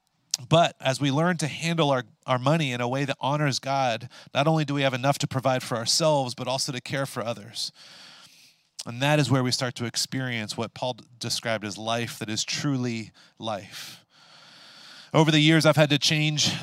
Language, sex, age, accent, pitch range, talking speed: English, male, 30-49, American, 125-155 Hz, 200 wpm